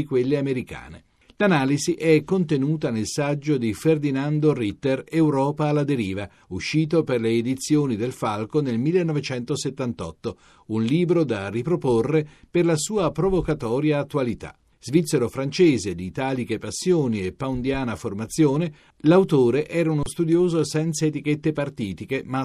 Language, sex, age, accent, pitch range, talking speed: Italian, male, 50-69, native, 120-155 Hz, 120 wpm